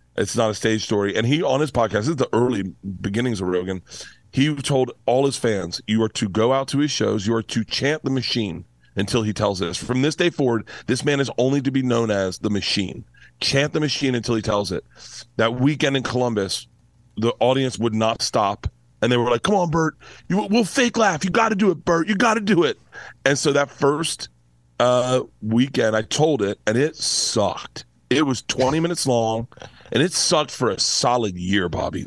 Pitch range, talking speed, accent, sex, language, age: 105-140 Hz, 215 wpm, American, male, English, 40-59